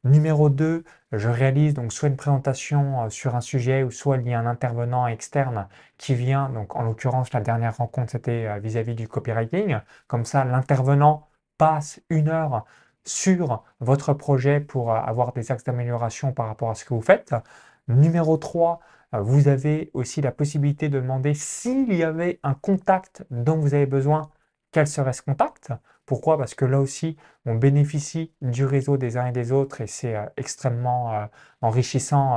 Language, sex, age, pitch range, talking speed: French, male, 20-39, 120-145 Hz, 170 wpm